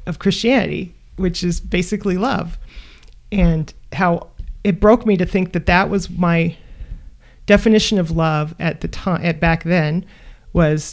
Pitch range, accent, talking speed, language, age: 150-190 Hz, American, 150 wpm, English, 30-49